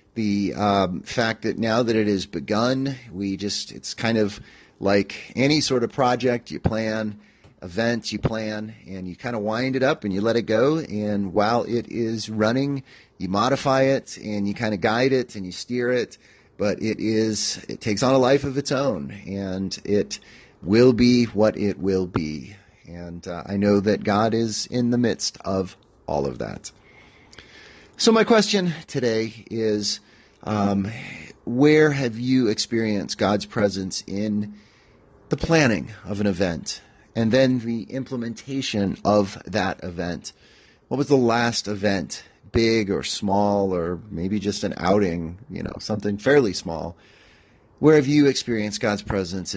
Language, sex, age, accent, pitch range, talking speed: English, male, 30-49, American, 100-120 Hz, 165 wpm